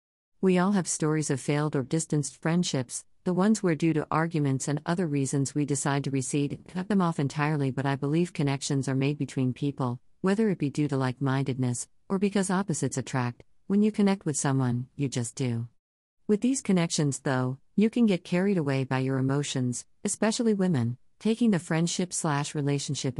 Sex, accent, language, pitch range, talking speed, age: female, American, English, 130-165 Hz, 180 wpm, 50-69